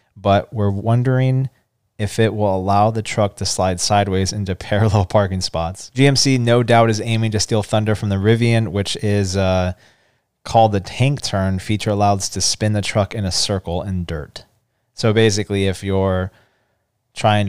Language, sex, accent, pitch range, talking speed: English, male, American, 100-115 Hz, 170 wpm